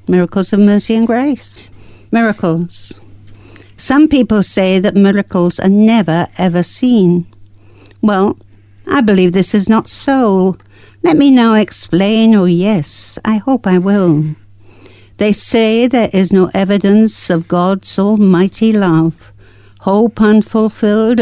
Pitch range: 155-215 Hz